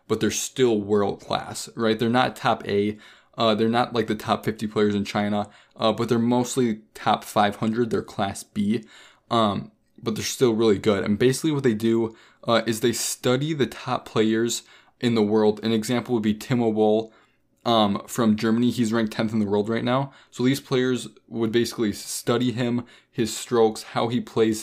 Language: English